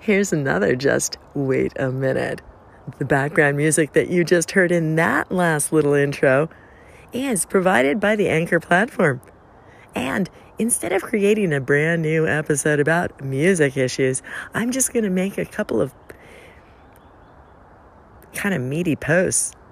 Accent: American